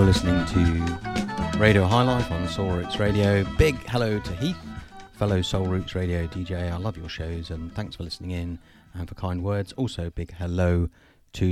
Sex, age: male, 30-49